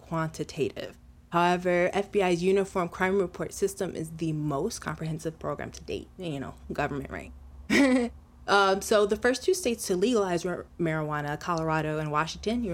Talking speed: 145 wpm